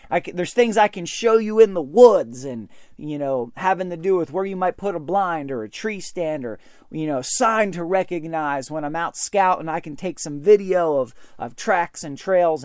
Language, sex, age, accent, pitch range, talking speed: English, male, 30-49, American, 170-220 Hz, 235 wpm